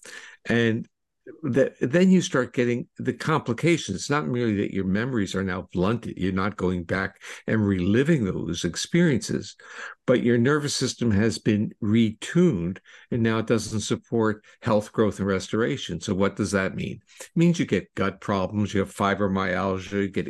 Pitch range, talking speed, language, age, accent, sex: 100-120 Hz, 170 wpm, English, 60-79, American, male